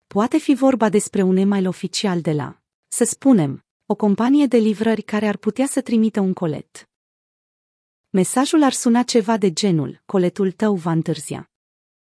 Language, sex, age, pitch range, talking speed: Romanian, female, 30-49, 175-230 Hz, 160 wpm